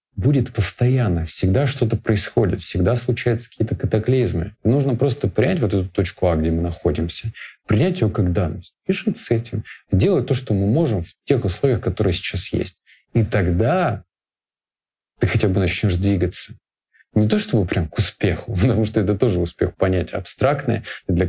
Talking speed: 165 wpm